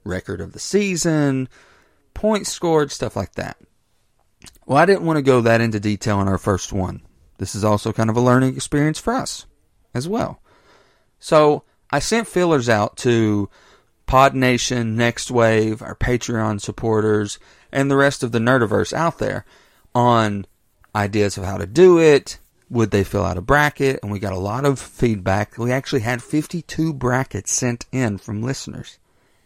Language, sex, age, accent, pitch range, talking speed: English, male, 40-59, American, 105-140 Hz, 170 wpm